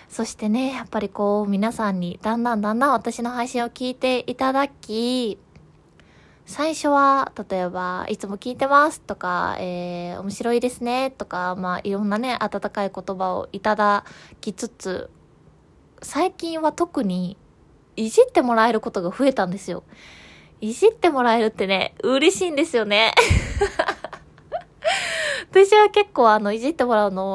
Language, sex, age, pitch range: Japanese, female, 20-39, 200-265 Hz